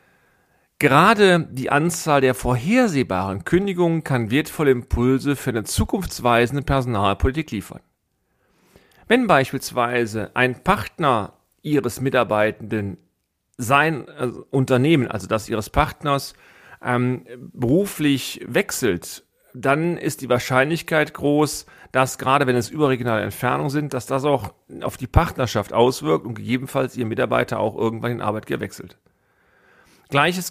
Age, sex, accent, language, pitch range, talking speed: 40-59, male, German, German, 120-145 Hz, 115 wpm